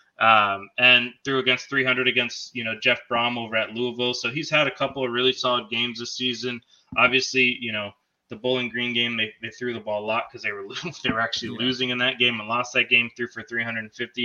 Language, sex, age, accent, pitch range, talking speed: English, male, 20-39, American, 115-130 Hz, 230 wpm